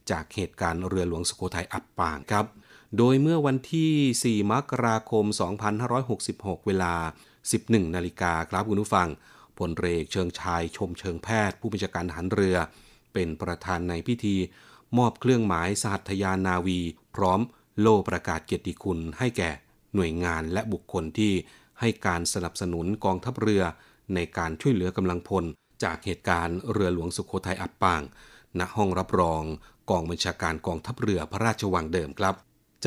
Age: 30-49